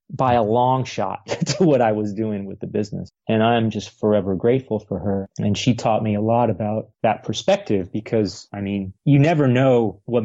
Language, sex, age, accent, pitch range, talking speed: English, male, 30-49, American, 105-130 Hz, 210 wpm